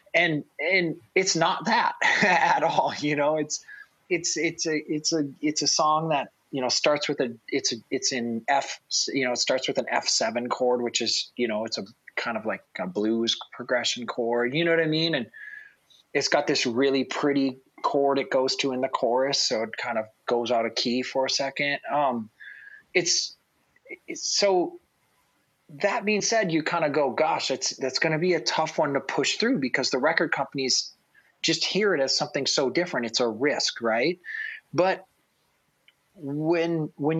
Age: 30-49